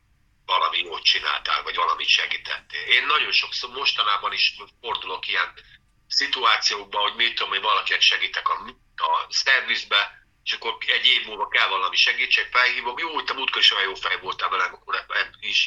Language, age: Hungarian, 50-69